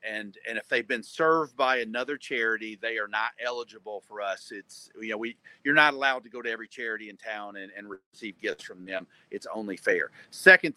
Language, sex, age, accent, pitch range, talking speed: English, male, 40-59, American, 105-140 Hz, 215 wpm